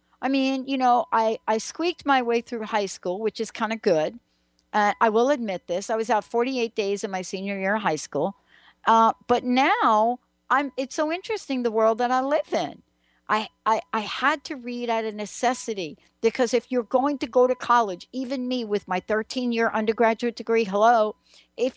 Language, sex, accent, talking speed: English, female, American, 200 wpm